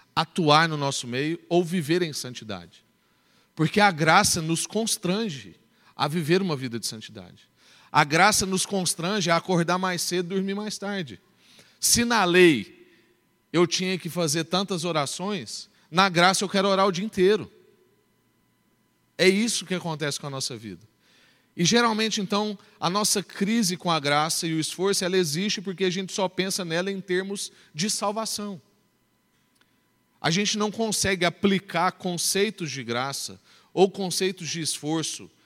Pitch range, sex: 155-195 Hz, male